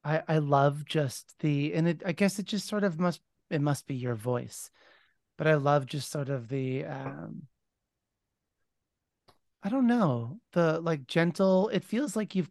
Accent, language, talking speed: American, English, 175 wpm